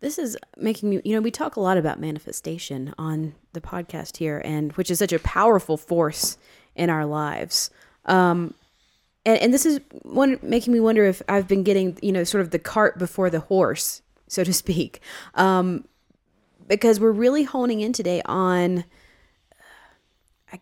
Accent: American